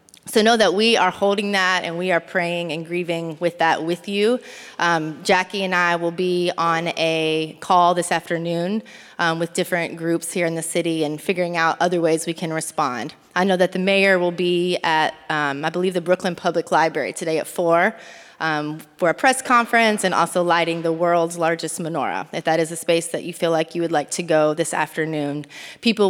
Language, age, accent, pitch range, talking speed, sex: English, 20-39, American, 165-210 Hz, 210 wpm, female